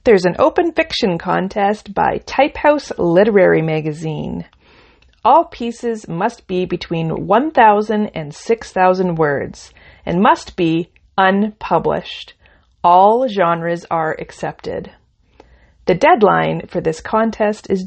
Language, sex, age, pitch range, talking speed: English, female, 30-49, 165-220 Hz, 105 wpm